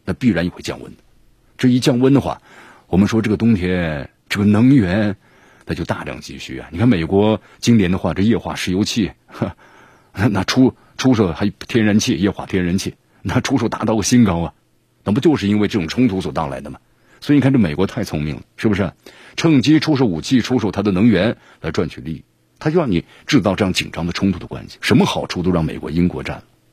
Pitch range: 85-120 Hz